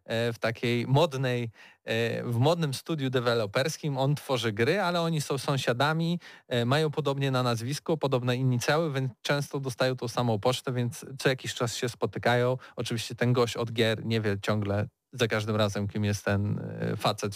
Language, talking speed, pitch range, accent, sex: Polish, 165 wpm, 120-155 Hz, native, male